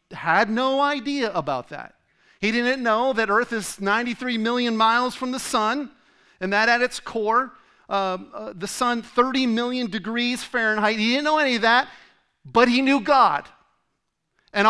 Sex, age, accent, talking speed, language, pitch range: male, 40-59, American, 165 wpm, English, 185-245 Hz